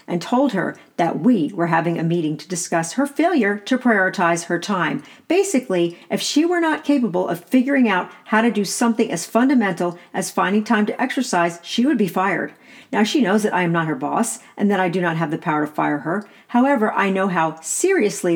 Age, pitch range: 50-69, 170-220 Hz